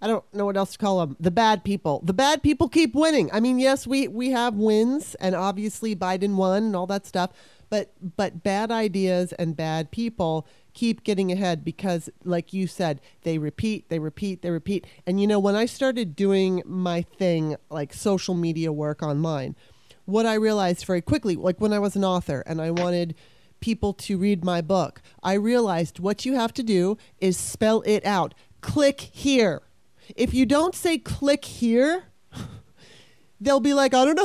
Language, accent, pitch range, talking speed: English, American, 180-235 Hz, 190 wpm